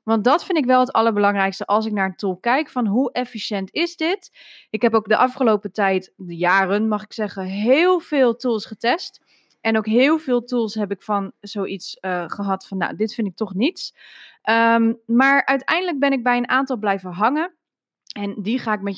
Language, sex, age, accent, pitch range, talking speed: Dutch, female, 20-39, Dutch, 195-245 Hz, 205 wpm